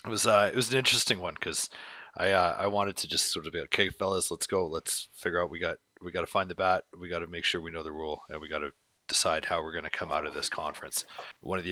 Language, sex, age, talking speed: English, male, 30-49, 300 wpm